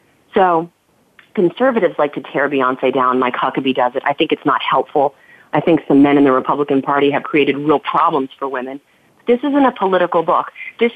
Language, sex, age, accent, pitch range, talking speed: English, female, 40-59, American, 165-225 Hz, 195 wpm